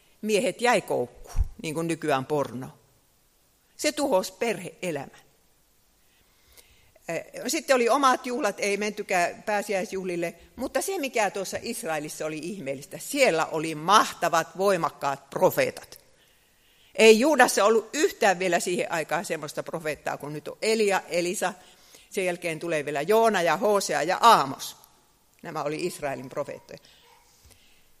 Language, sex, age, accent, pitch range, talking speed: Finnish, female, 50-69, native, 165-225 Hz, 120 wpm